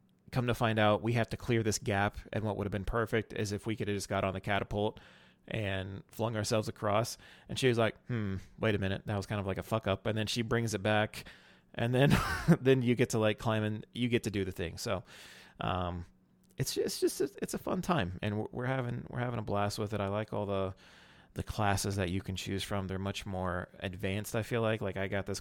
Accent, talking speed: American, 255 wpm